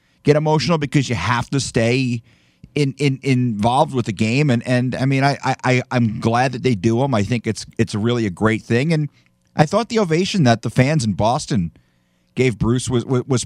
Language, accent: English, American